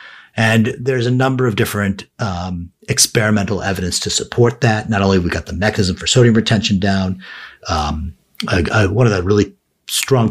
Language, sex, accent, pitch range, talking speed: English, male, American, 95-125 Hz, 180 wpm